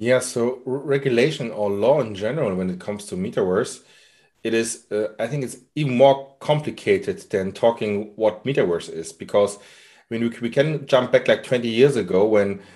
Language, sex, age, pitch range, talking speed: English, male, 30-49, 105-135 Hz, 190 wpm